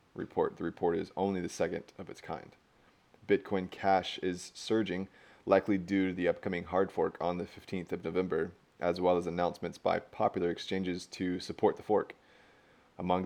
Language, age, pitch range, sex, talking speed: English, 20-39, 85-95 Hz, male, 170 wpm